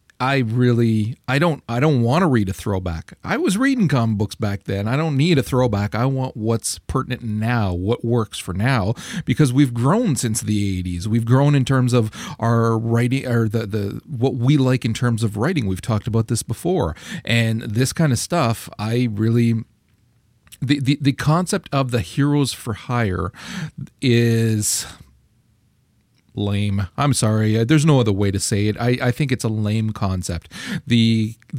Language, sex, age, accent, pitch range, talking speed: English, male, 40-59, American, 110-135 Hz, 180 wpm